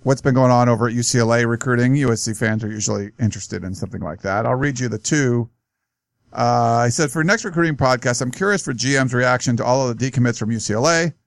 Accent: American